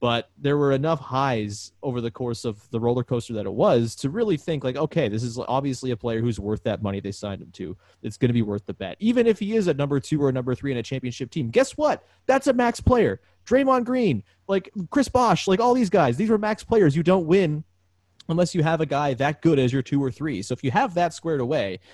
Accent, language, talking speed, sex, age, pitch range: American, English, 265 wpm, male, 30-49, 120-170 Hz